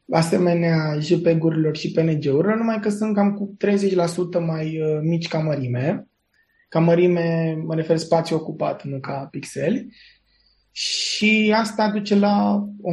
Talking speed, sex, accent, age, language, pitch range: 130 wpm, male, native, 20-39, Romanian, 145-180 Hz